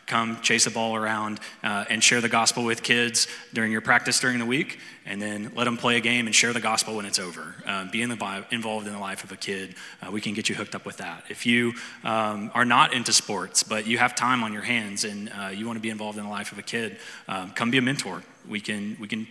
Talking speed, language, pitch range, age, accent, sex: 260 wpm, English, 110-120 Hz, 20-39, American, male